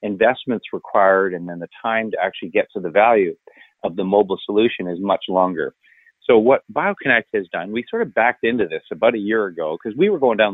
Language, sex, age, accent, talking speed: English, male, 40-59, American, 220 wpm